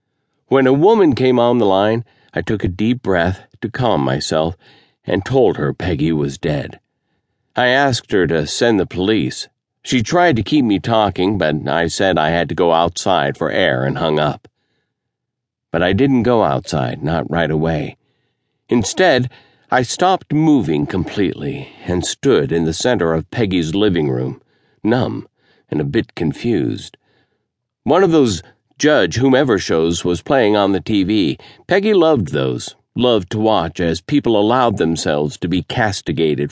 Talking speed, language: 160 wpm, English